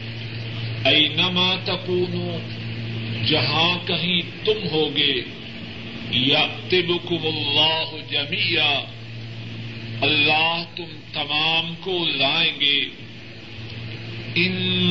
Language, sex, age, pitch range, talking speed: Urdu, male, 50-69, 115-175 Hz, 65 wpm